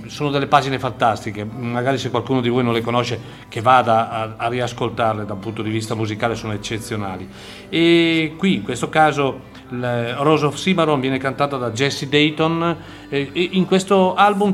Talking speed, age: 170 wpm, 40-59